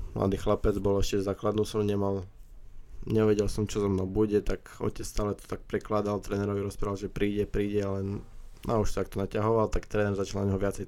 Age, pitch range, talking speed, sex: 20-39, 100-110 Hz, 200 wpm, male